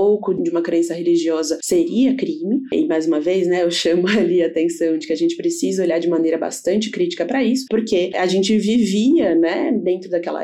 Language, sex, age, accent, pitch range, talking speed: Portuguese, female, 20-39, Brazilian, 170-255 Hz, 200 wpm